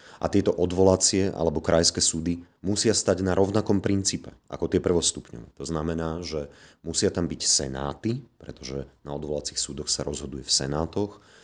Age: 30-49